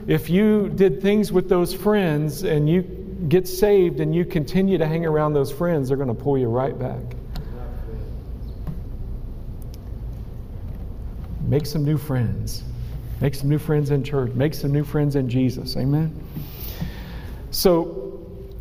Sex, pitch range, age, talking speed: male, 140-205 Hz, 50-69, 140 wpm